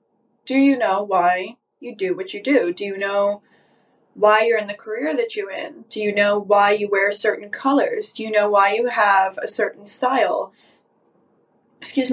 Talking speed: 190 wpm